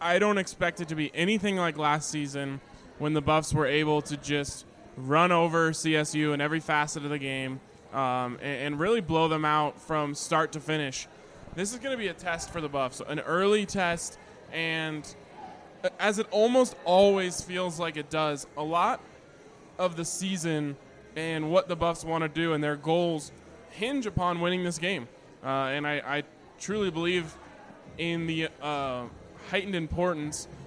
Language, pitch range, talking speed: English, 150-175 Hz, 175 wpm